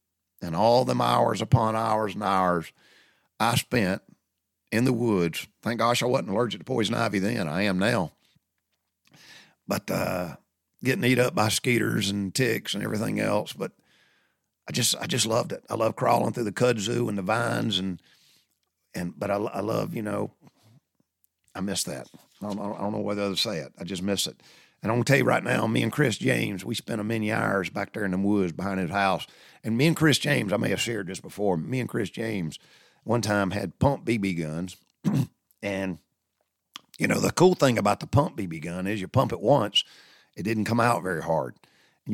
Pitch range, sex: 95-115 Hz, male